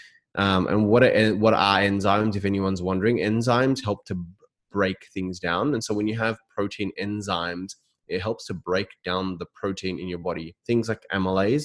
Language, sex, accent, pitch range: English, male, Australian, 90-110 Hz